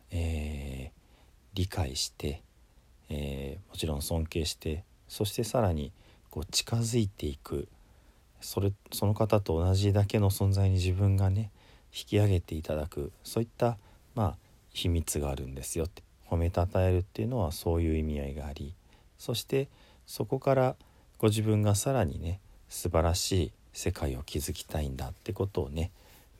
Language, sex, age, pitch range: Japanese, male, 40-59, 75-100 Hz